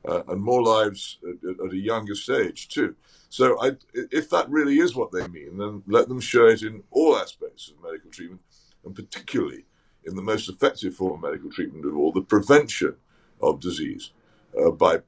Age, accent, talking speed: 50-69, British, 185 wpm